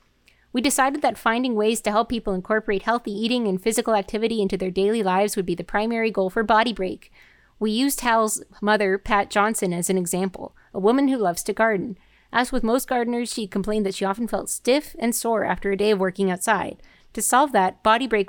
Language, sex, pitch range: English, female, 200-245 Hz